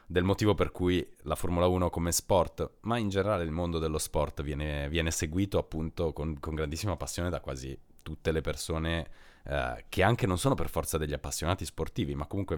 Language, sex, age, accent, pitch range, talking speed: Italian, male, 30-49, native, 75-90 Hz, 195 wpm